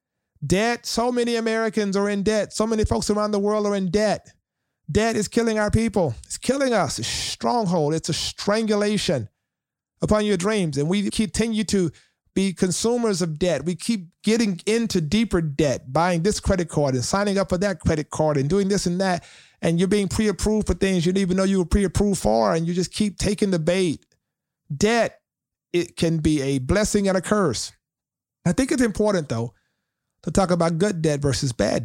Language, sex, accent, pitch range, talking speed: English, male, American, 155-205 Hz, 200 wpm